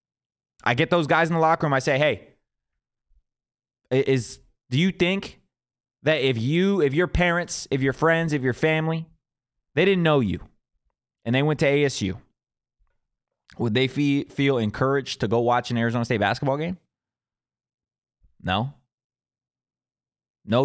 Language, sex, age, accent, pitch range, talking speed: English, male, 20-39, American, 120-155 Hz, 150 wpm